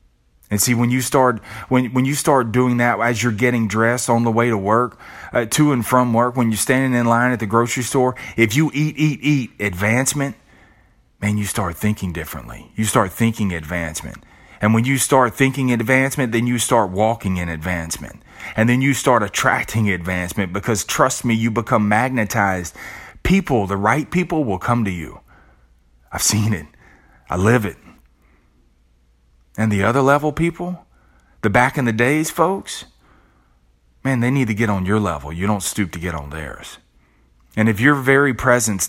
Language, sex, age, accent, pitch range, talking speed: English, male, 30-49, American, 80-120 Hz, 180 wpm